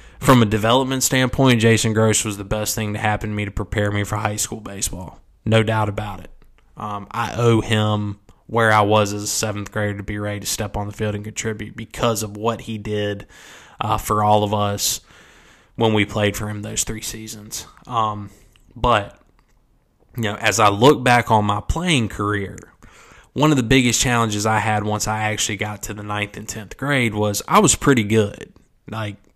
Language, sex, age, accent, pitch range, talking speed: English, male, 20-39, American, 105-115 Hz, 200 wpm